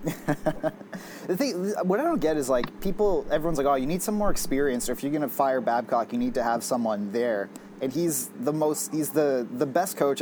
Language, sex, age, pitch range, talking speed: English, male, 30-49, 120-150 Hz, 230 wpm